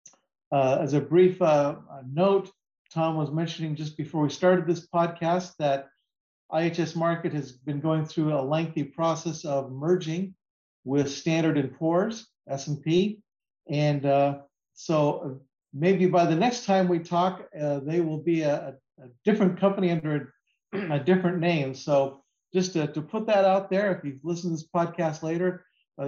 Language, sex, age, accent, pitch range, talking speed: English, male, 50-69, American, 145-175 Hz, 165 wpm